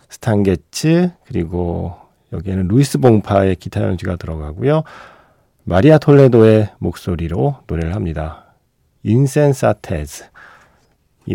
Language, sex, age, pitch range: Korean, male, 40-59, 90-135 Hz